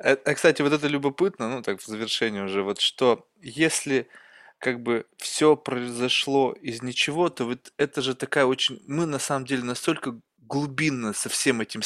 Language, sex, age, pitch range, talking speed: Russian, male, 20-39, 135-175 Hz, 170 wpm